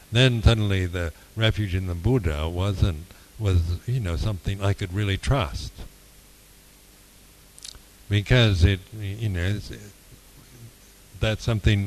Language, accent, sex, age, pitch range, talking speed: English, American, male, 60-79, 85-105 Hz, 120 wpm